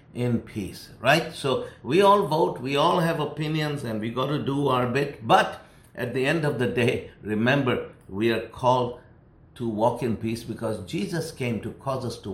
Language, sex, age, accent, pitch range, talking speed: English, male, 60-79, Indian, 115-150 Hz, 195 wpm